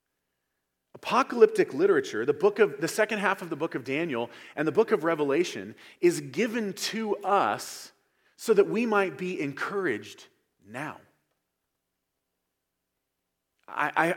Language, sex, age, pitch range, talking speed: English, male, 40-59, 165-265 Hz, 125 wpm